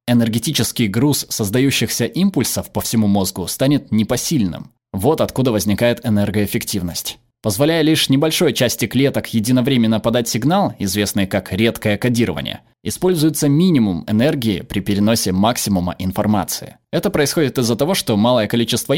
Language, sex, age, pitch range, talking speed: Russian, male, 20-39, 105-145 Hz, 125 wpm